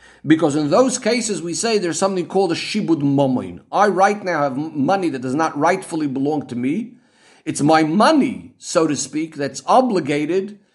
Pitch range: 155-210 Hz